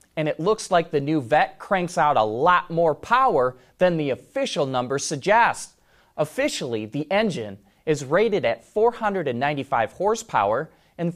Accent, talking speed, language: American, 145 wpm, English